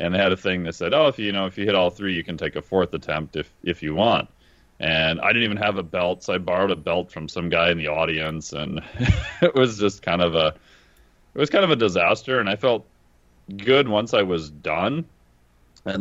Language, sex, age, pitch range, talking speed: English, male, 30-49, 80-100 Hz, 250 wpm